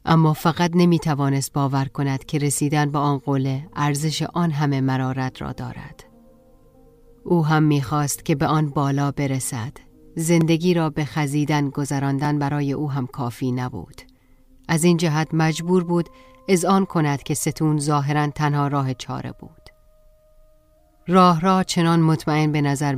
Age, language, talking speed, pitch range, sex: 40-59, Persian, 150 wpm, 130-155 Hz, female